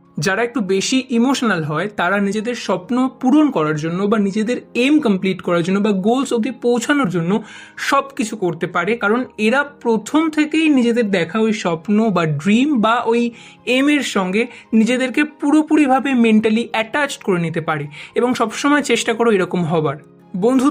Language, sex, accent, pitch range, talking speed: Bengali, male, native, 185-240 Hz, 155 wpm